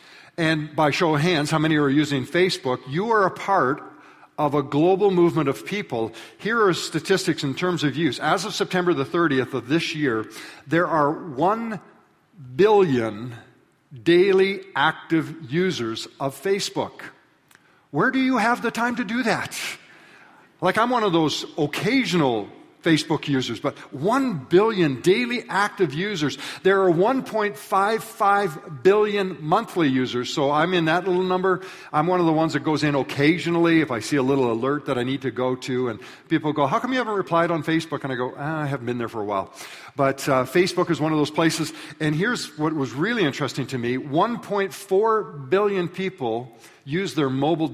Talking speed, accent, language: 180 wpm, American, English